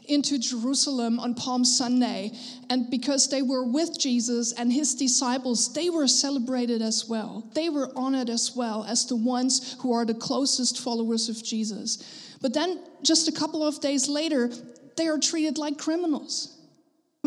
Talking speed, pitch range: 165 wpm, 250-300 Hz